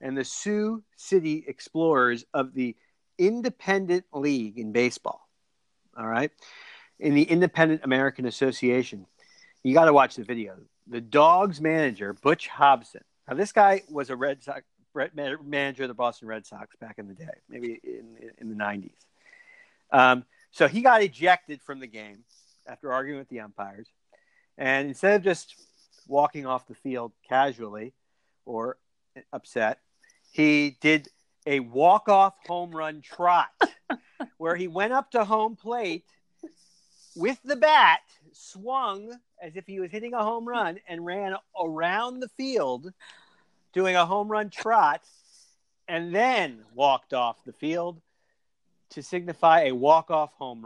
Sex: male